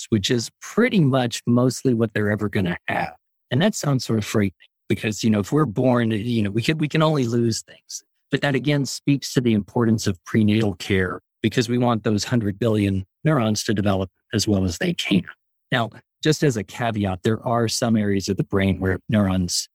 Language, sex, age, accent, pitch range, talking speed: English, male, 50-69, American, 100-120 Hz, 210 wpm